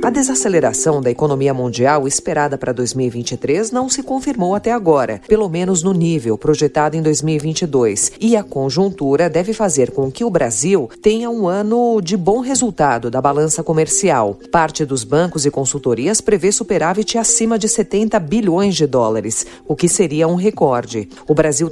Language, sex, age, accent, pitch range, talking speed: Portuguese, female, 50-69, Brazilian, 135-200 Hz, 160 wpm